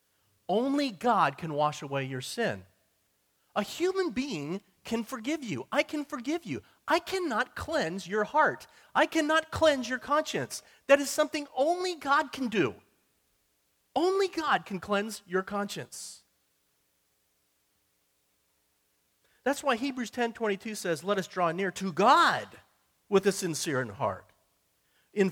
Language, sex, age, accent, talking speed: English, male, 40-59, American, 135 wpm